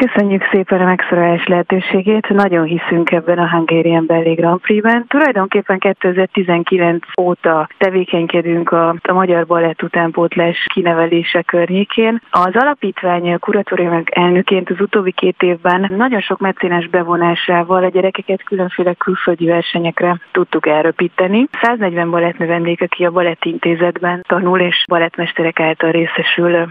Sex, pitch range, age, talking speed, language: female, 170-195 Hz, 30-49, 110 wpm, Hungarian